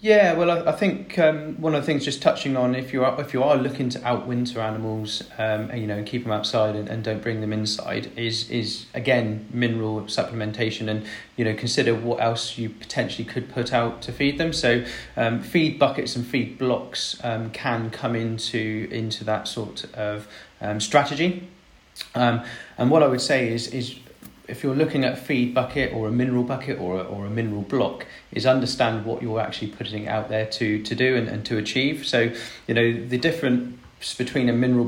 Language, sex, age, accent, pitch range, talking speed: English, male, 30-49, British, 105-125 Hz, 205 wpm